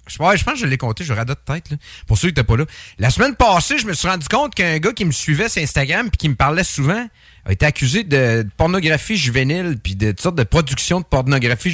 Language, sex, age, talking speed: English, male, 30-49, 290 wpm